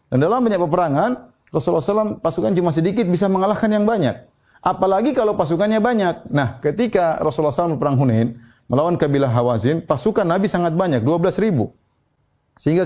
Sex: male